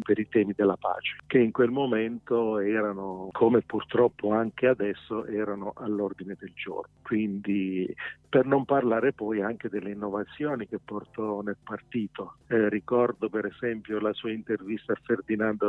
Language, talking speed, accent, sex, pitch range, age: Italian, 150 wpm, native, male, 105-125 Hz, 50-69